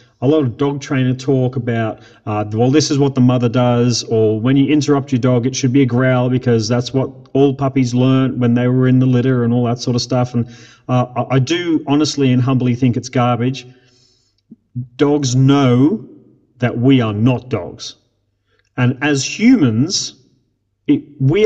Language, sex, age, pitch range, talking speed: English, male, 30-49, 120-145 Hz, 180 wpm